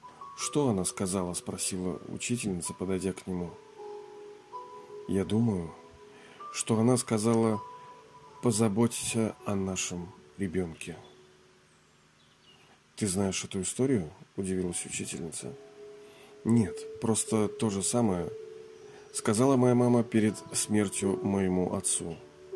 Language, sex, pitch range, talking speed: Russian, male, 100-145 Hz, 95 wpm